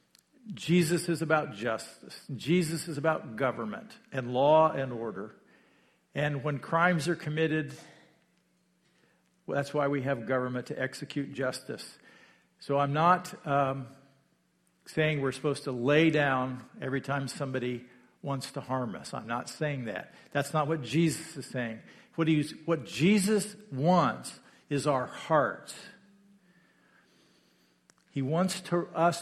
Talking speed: 130 wpm